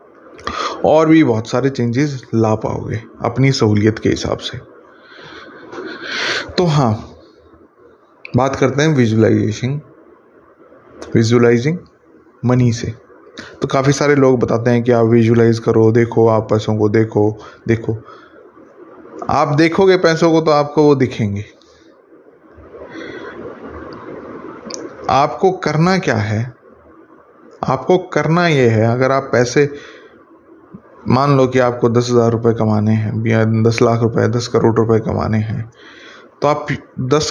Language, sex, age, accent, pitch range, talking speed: Hindi, male, 20-39, native, 115-150 Hz, 125 wpm